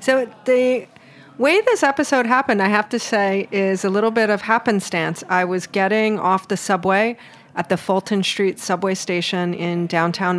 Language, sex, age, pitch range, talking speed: English, female, 30-49, 180-215 Hz, 175 wpm